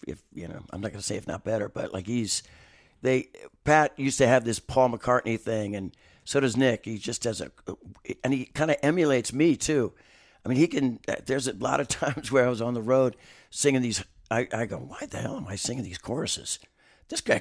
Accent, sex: American, male